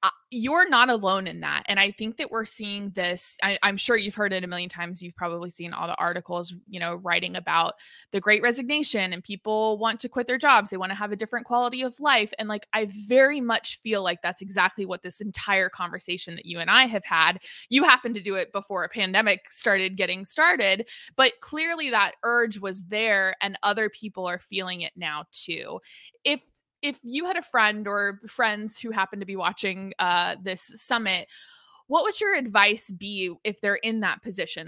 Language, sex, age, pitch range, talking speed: English, female, 20-39, 185-230 Hz, 205 wpm